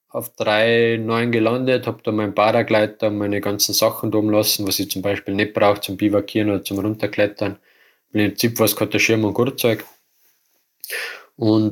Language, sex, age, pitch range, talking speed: German, male, 20-39, 100-110 Hz, 155 wpm